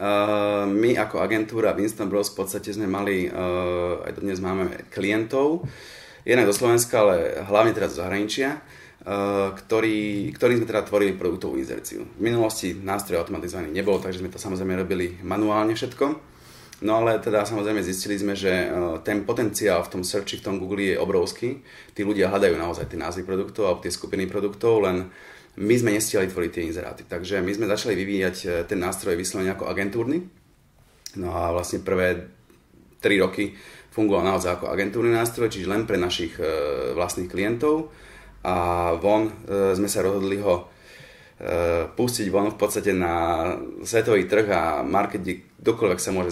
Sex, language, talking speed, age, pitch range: male, Slovak, 160 wpm, 30-49, 90-110 Hz